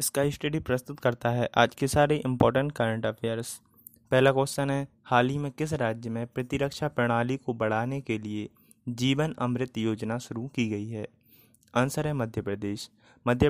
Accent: native